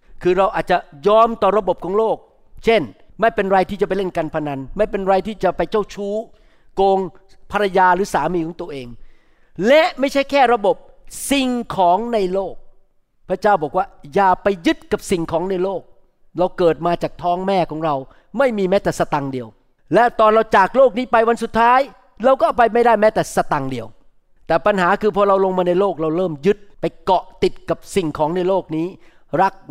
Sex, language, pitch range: male, Thai, 170-230 Hz